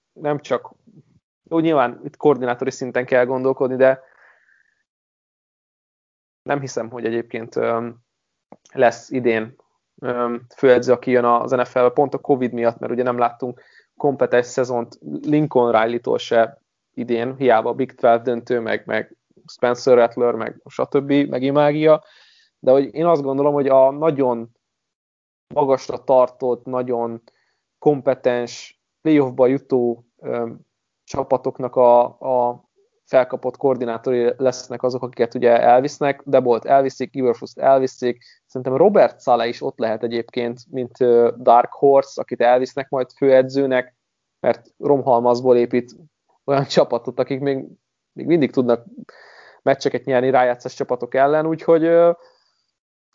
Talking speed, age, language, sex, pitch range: 120 wpm, 20-39, Hungarian, male, 120-135 Hz